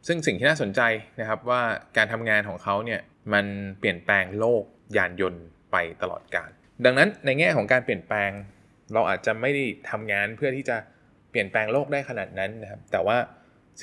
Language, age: Thai, 20-39